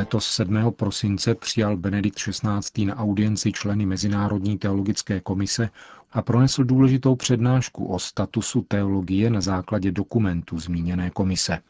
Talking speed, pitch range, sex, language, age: 125 wpm, 95-115 Hz, male, Czech, 40-59